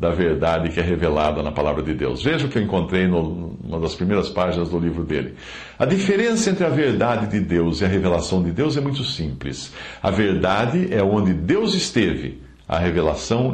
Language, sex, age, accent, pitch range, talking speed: English, male, 60-79, Brazilian, 85-125 Hz, 195 wpm